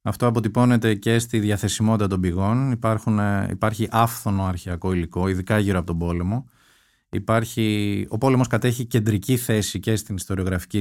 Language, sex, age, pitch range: Greek, male, 20-39, 95-120 Hz